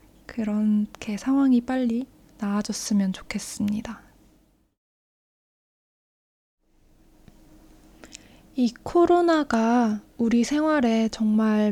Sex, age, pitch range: female, 20-39, 210-245 Hz